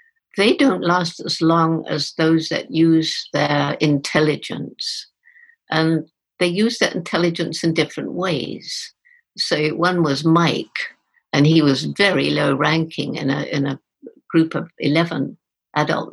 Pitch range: 150-185 Hz